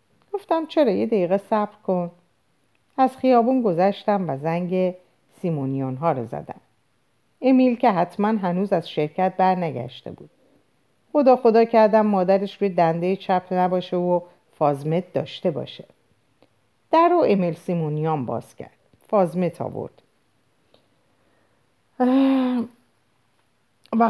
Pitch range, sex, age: 150-215 Hz, female, 50-69